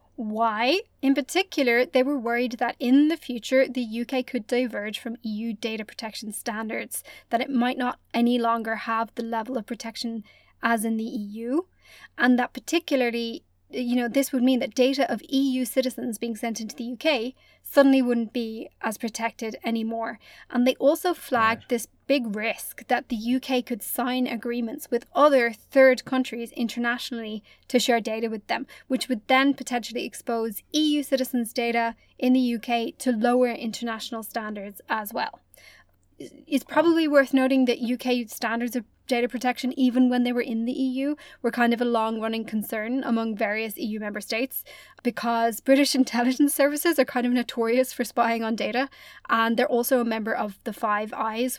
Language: English